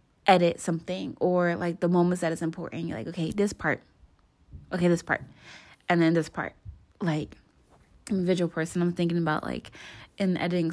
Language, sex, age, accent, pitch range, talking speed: English, female, 20-39, American, 165-185 Hz, 180 wpm